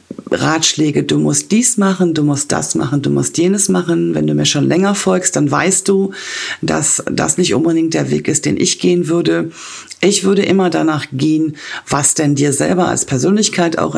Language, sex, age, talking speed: German, female, 40-59, 195 wpm